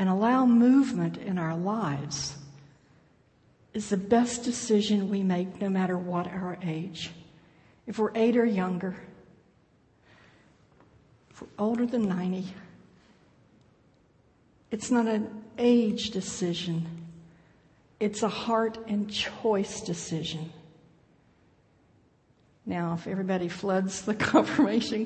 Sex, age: female, 60-79